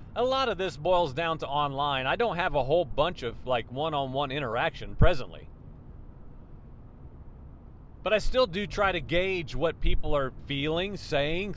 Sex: male